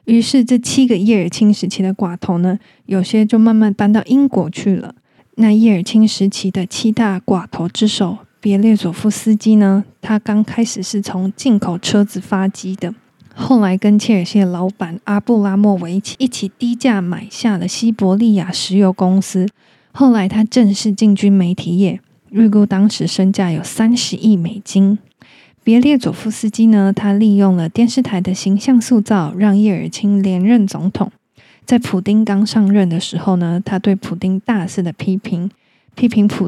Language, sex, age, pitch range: Chinese, female, 20-39, 190-220 Hz